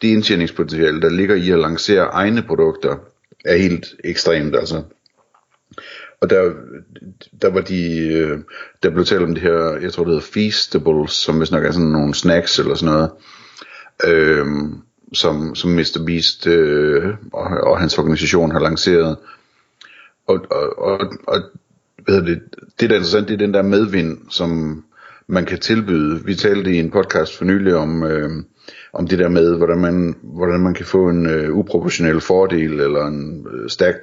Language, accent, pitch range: Danish, native, 80-110 Hz